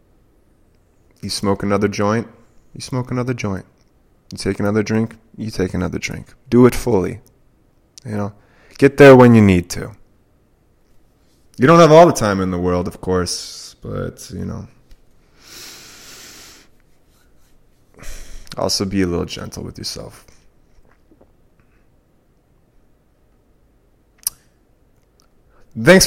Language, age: English, 20-39